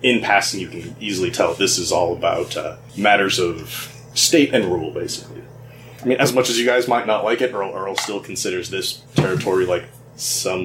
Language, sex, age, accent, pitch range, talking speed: English, male, 30-49, American, 115-130 Hz, 205 wpm